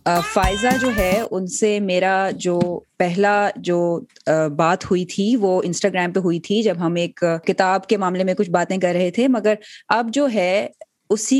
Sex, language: female, Urdu